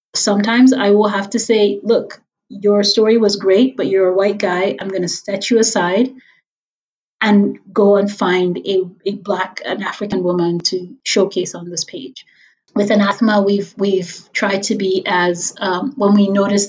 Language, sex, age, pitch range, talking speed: English, female, 30-49, 190-235 Hz, 175 wpm